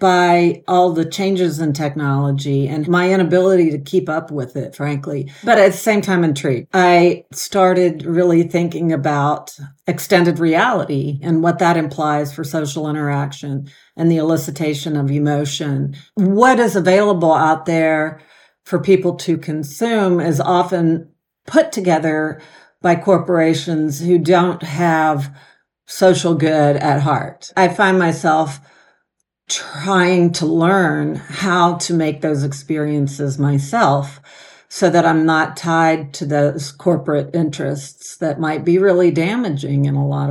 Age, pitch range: 50-69, 150-180 Hz